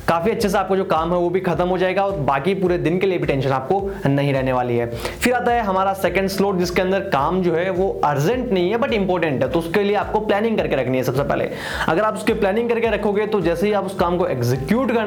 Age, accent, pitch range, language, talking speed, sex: 20-39, native, 155-195 Hz, Hindi, 120 wpm, male